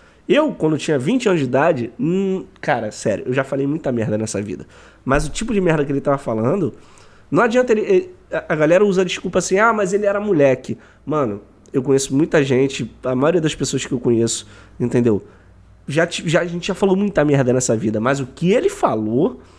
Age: 20-39